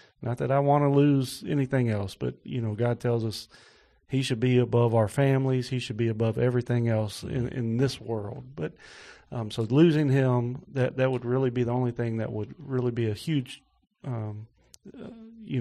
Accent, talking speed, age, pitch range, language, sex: American, 200 wpm, 40-59, 110-135 Hz, English, male